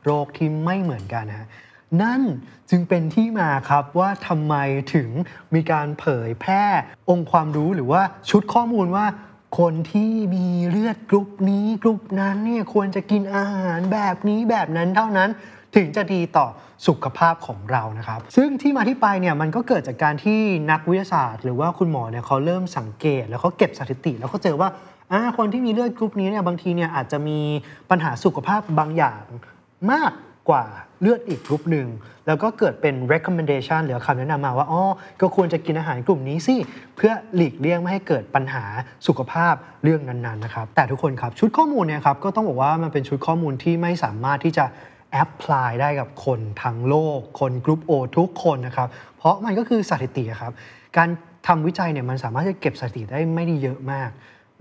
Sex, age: male, 20-39